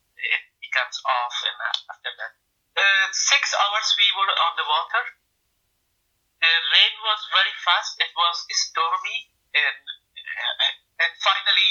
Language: English